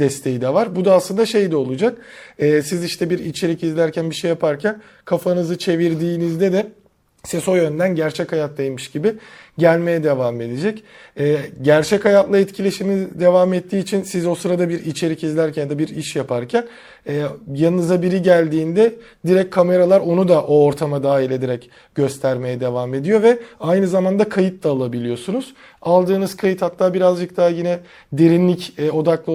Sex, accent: male, native